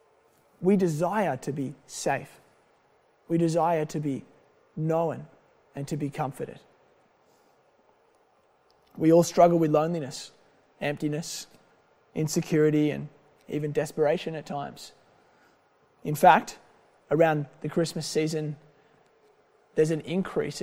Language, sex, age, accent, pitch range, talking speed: English, male, 20-39, Australian, 145-175 Hz, 100 wpm